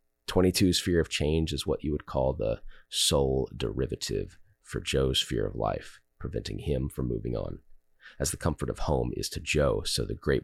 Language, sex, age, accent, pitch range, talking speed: English, male, 30-49, American, 65-80 Hz, 190 wpm